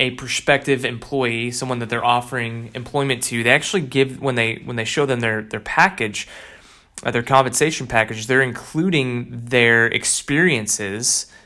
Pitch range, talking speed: 120-150 Hz, 145 wpm